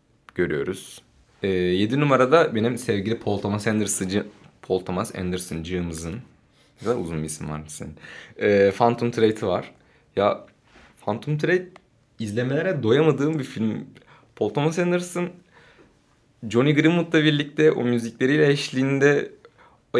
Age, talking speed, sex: 30-49, 115 wpm, male